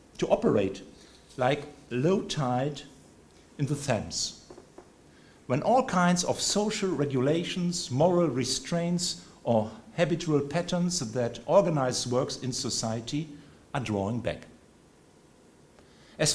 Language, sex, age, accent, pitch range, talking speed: English, male, 50-69, German, 120-170 Hz, 105 wpm